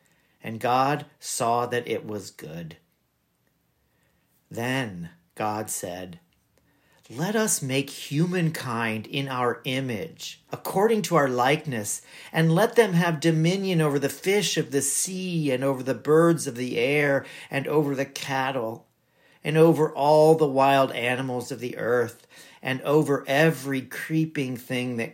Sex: male